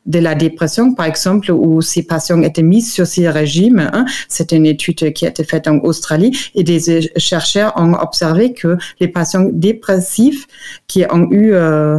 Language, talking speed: French, 180 wpm